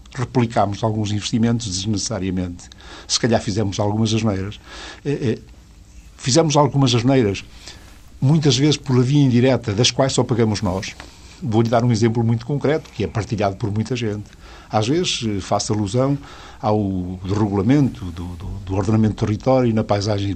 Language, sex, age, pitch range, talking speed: Portuguese, male, 60-79, 100-130 Hz, 150 wpm